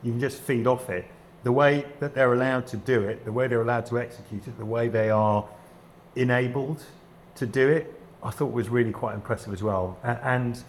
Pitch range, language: 100-135 Hz, English